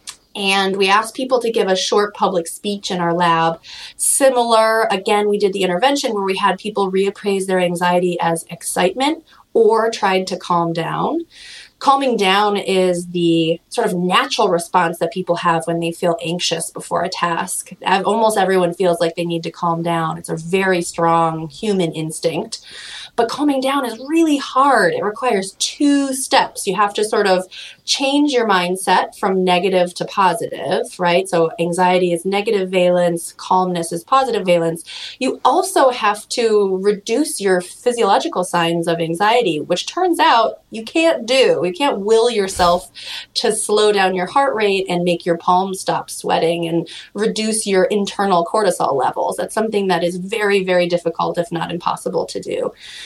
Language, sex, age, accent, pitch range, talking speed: English, female, 30-49, American, 175-225 Hz, 165 wpm